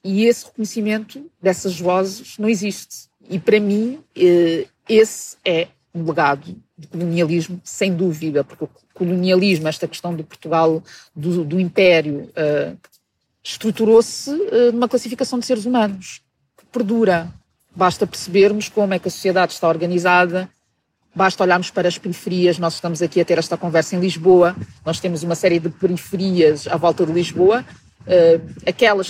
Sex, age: female, 40-59